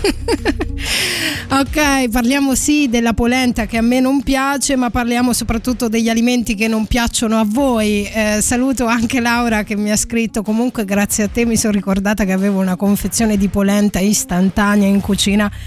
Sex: female